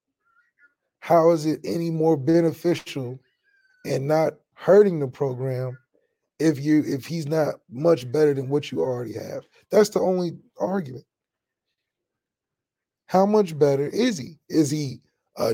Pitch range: 145-180 Hz